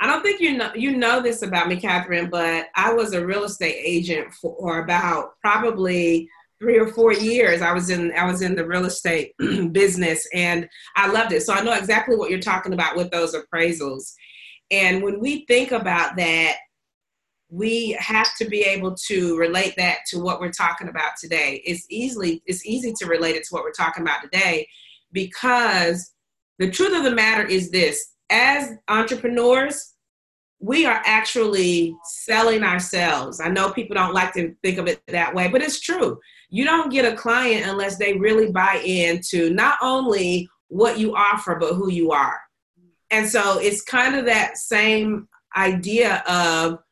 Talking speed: 180 wpm